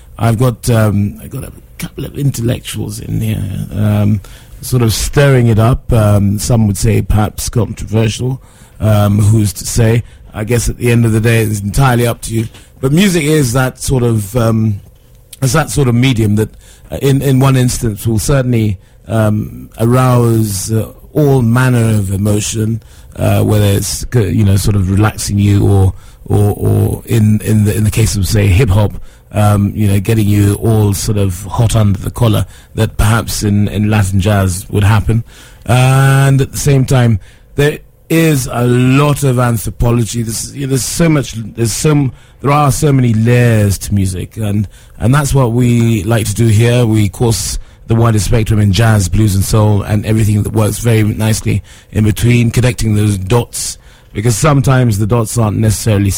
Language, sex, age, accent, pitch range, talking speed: English, male, 30-49, British, 105-120 Hz, 175 wpm